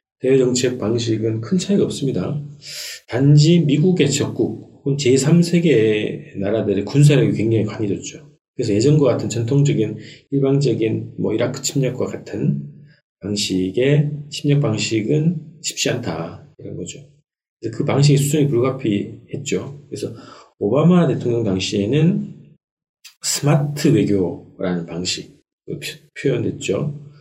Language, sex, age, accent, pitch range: Korean, male, 40-59, native, 105-150 Hz